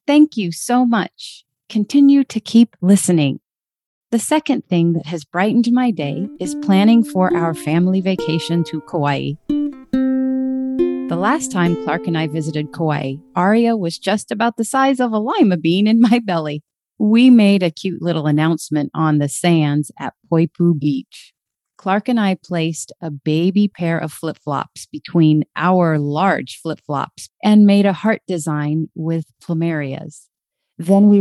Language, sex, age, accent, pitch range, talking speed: English, female, 30-49, American, 155-215 Hz, 150 wpm